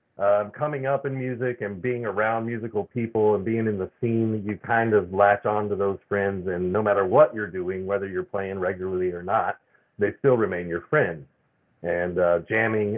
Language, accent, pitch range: English, American, 95-115 Hz